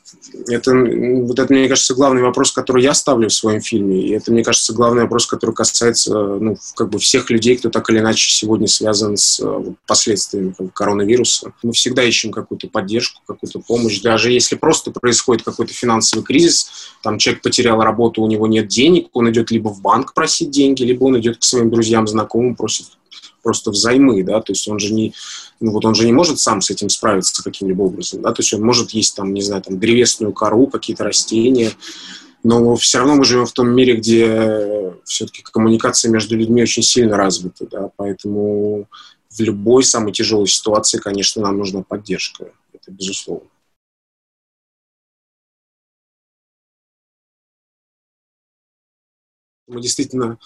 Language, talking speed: Russian, 165 wpm